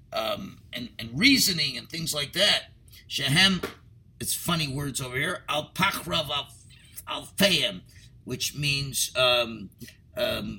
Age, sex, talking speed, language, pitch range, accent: 50-69, male, 100 wpm, English, 115-150 Hz, American